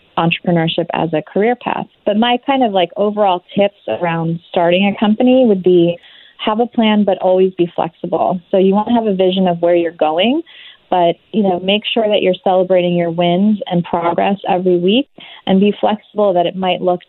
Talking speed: 200 wpm